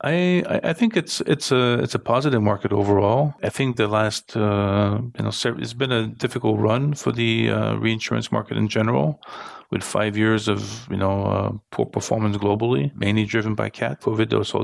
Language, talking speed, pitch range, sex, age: English, 190 wpm, 105-115 Hz, male, 40-59